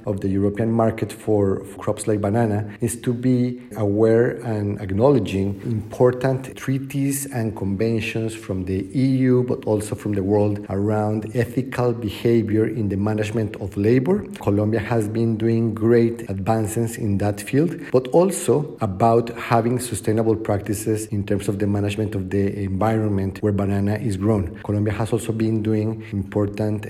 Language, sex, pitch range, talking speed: Spanish, male, 105-115 Hz, 150 wpm